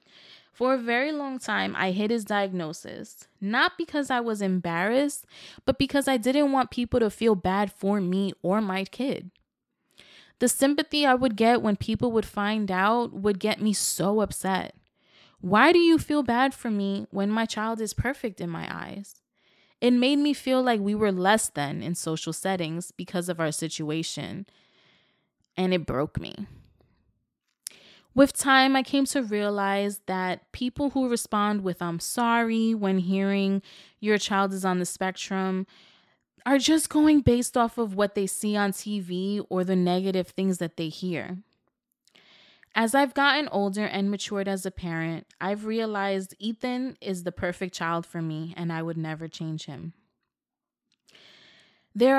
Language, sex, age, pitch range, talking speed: English, female, 20-39, 185-240 Hz, 165 wpm